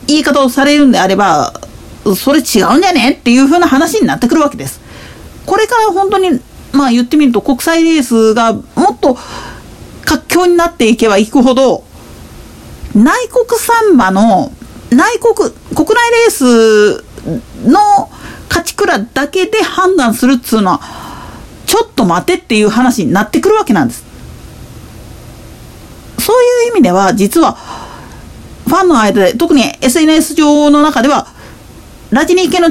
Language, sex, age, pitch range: Japanese, female, 40-59, 240-355 Hz